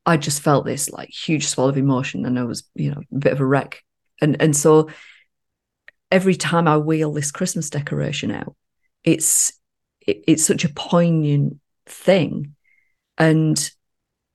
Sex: female